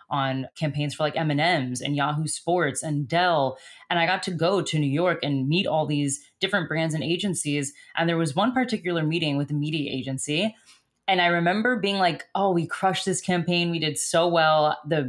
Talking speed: 205 wpm